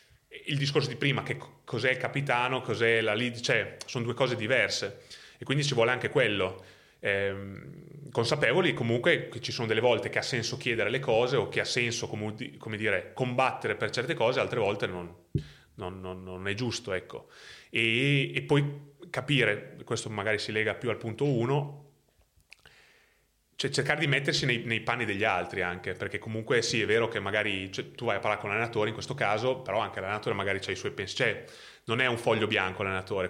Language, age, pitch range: Italian, 30-49, 105-130 Hz